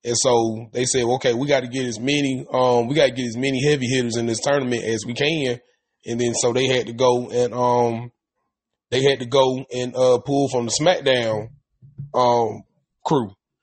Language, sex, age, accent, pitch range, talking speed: English, male, 20-39, American, 125-145 Hz, 205 wpm